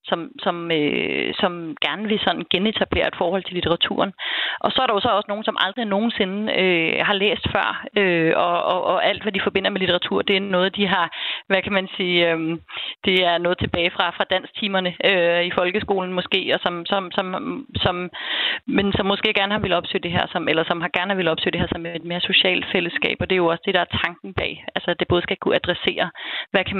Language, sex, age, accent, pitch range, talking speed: Danish, female, 30-49, native, 175-205 Hz, 235 wpm